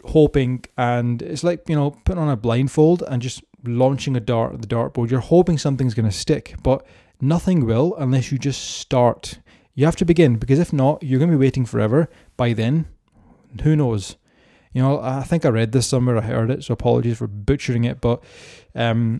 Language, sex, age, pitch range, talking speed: English, male, 20-39, 120-145 Hz, 205 wpm